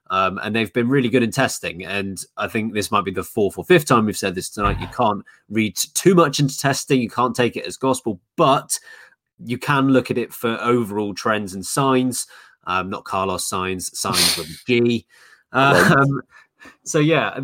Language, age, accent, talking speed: English, 20-39, British, 195 wpm